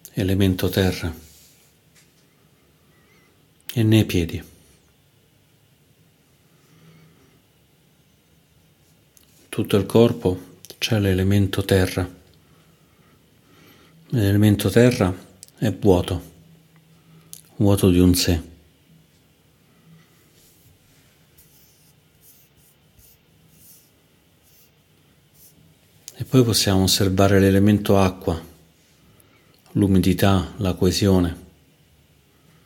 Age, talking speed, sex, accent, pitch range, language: 50-69, 50 wpm, male, native, 90-125 Hz, Italian